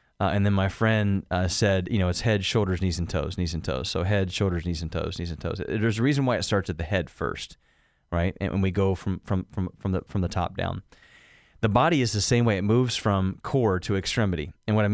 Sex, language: male, English